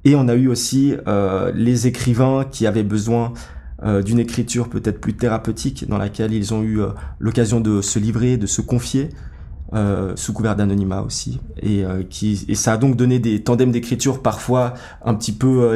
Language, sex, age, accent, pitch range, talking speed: French, male, 20-39, French, 105-125 Hz, 195 wpm